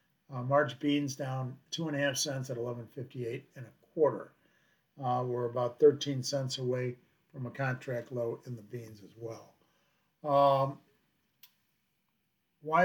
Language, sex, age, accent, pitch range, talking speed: English, male, 50-69, American, 130-145 Hz, 130 wpm